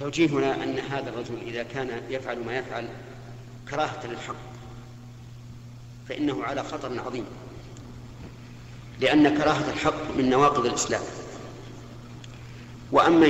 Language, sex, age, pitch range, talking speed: Arabic, male, 50-69, 120-135 Hz, 100 wpm